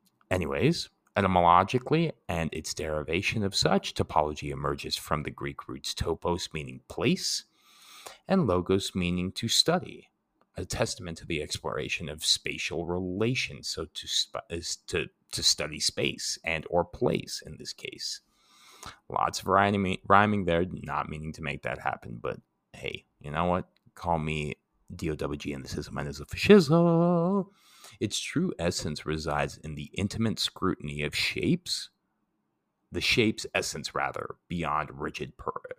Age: 30-49